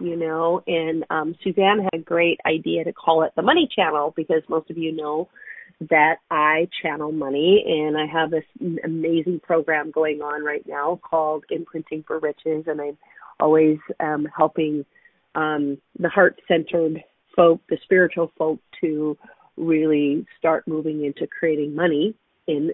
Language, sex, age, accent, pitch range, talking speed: English, female, 40-59, American, 155-175 Hz, 155 wpm